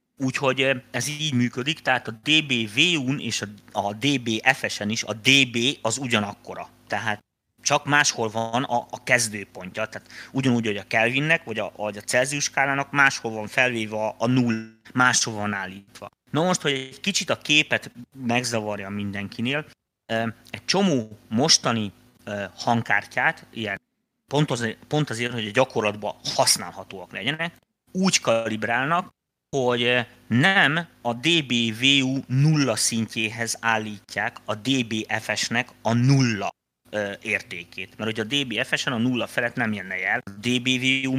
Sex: male